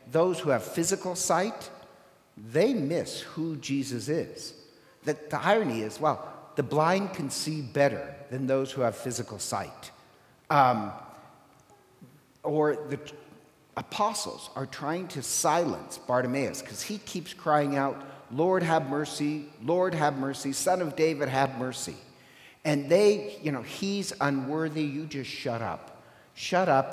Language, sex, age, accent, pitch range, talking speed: English, male, 50-69, American, 130-160 Hz, 140 wpm